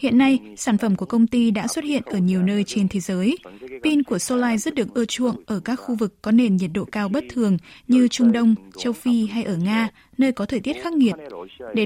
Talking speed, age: 250 wpm, 20-39